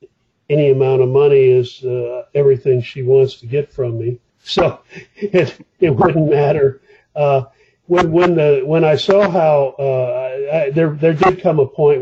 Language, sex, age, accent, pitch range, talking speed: English, male, 50-69, American, 125-140 Hz, 175 wpm